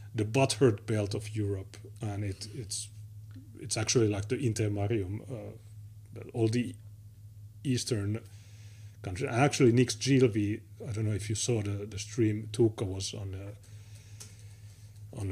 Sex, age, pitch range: male, 30-49, 105-125 Hz